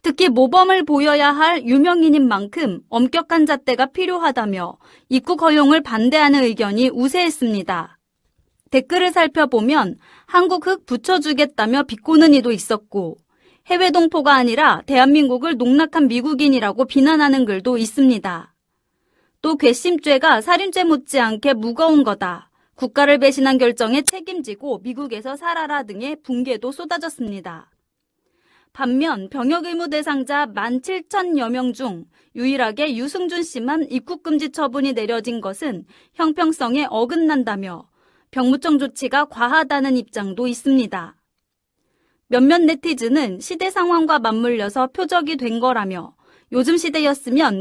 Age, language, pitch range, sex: 30-49, Korean, 245-315 Hz, female